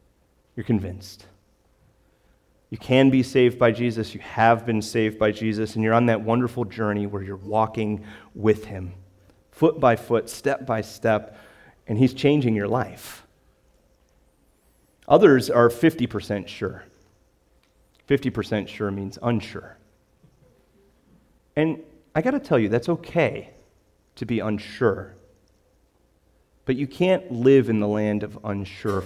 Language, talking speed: English, 130 wpm